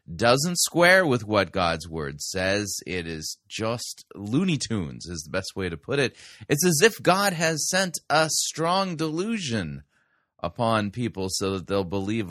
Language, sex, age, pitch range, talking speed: English, male, 30-49, 95-135 Hz, 165 wpm